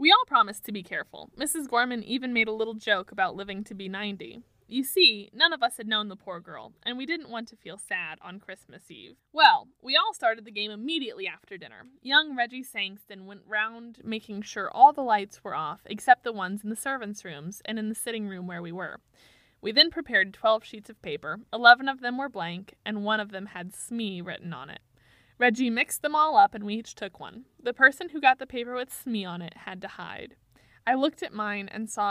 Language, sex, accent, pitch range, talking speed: English, female, American, 195-255 Hz, 230 wpm